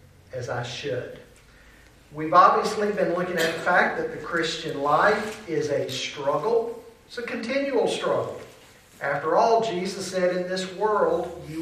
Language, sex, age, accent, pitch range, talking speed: English, male, 50-69, American, 150-210 Hz, 150 wpm